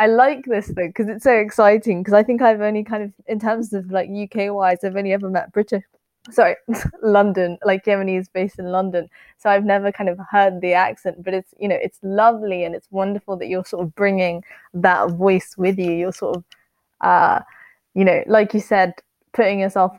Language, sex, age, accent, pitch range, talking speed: English, female, 20-39, British, 180-205 Hz, 215 wpm